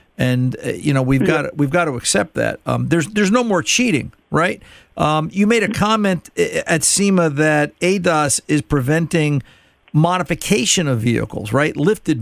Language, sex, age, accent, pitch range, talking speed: English, male, 50-69, American, 120-155 Hz, 160 wpm